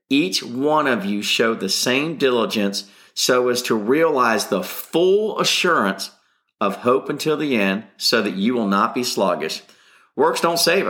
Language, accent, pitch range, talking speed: English, American, 115-150 Hz, 165 wpm